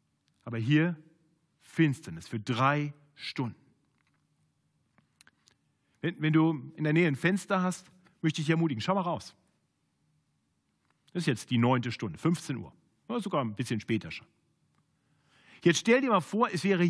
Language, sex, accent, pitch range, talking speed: German, male, German, 150-235 Hz, 155 wpm